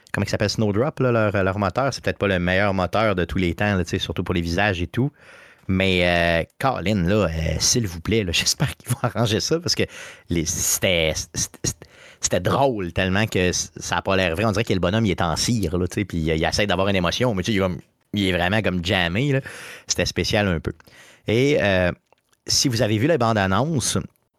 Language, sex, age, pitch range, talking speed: French, male, 30-49, 90-110 Hz, 220 wpm